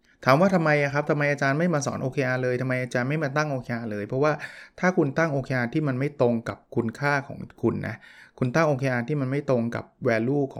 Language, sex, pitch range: Thai, male, 115-145 Hz